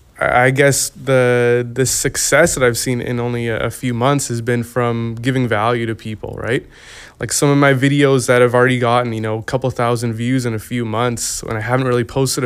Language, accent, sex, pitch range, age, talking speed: English, American, male, 115-130 Hz, 20-39, 220 wpm